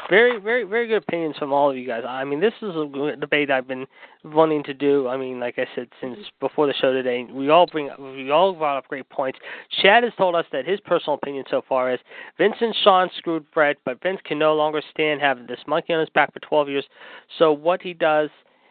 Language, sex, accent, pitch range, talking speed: English, male, American, 135-165 Hz, 240 wpm